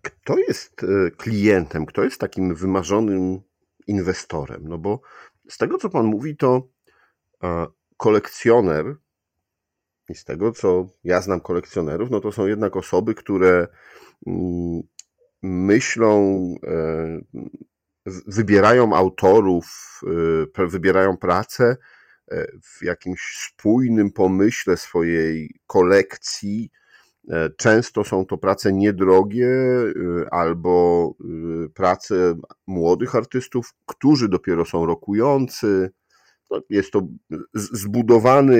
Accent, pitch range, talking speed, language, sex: native, 85-105 Hz, 85 wpm, Polish, male